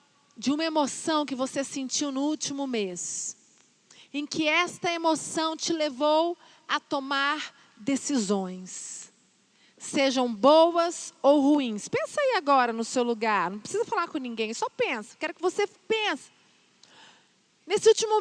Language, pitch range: Portuguese, 275-400 Hz